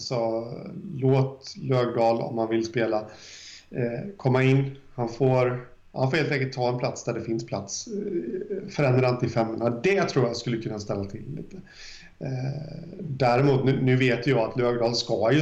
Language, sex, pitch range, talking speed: Swedish, male, 110-130 Hz, 155 wpm